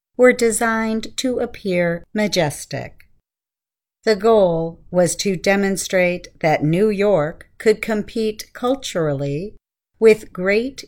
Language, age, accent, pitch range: Chinese, 50-69, American, 155-215 Hz